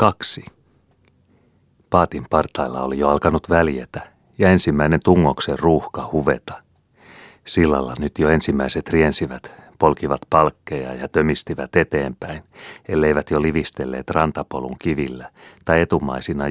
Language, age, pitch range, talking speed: Finnish, 40-59, 65-80 Hz, 105 wpm